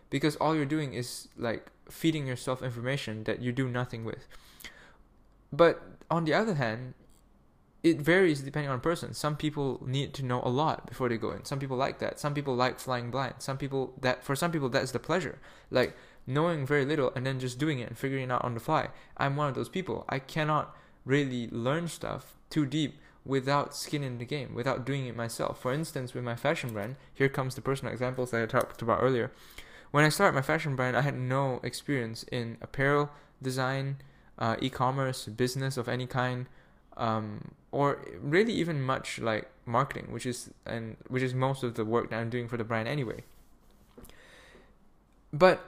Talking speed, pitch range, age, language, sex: 195 wpm, 125-145 Hz, 10-29, English, male